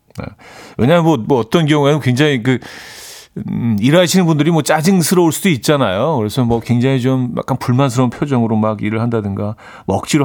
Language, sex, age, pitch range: Korean, male, 40-59, 110-150 Hz